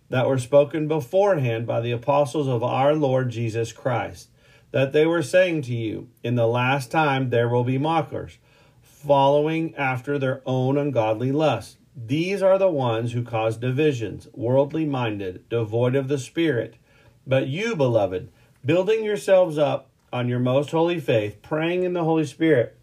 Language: English